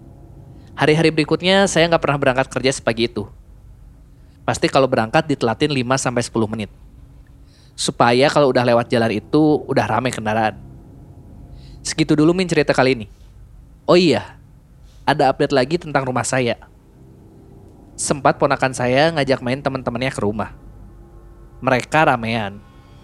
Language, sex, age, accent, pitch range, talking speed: Indonesian, male, 20-39, native, 115-145 Hz, 125 wpm